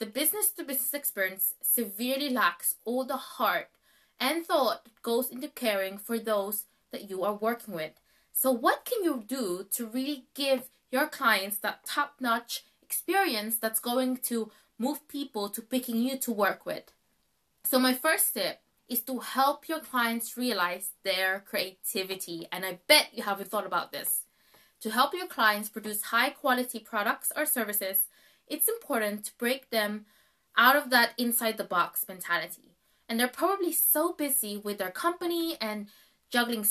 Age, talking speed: 20-39, 155 wpm